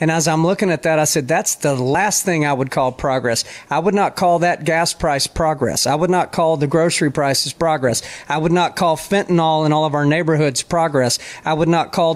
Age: 40-59